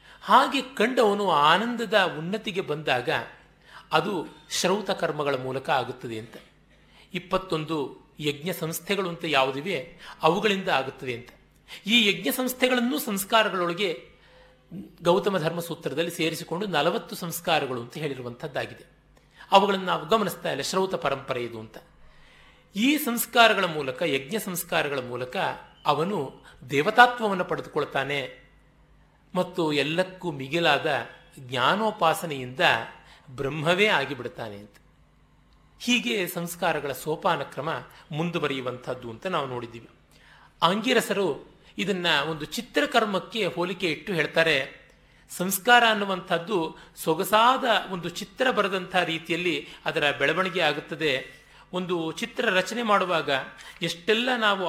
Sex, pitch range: male, 155-205 Hz